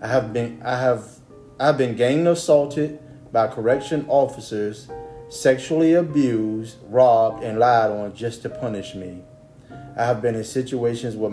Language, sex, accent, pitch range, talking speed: English, male, American, 115-135 Hz, 130 wpm